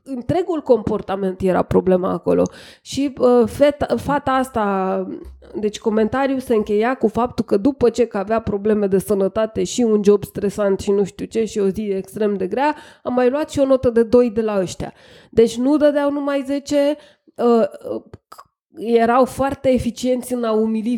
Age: 20-39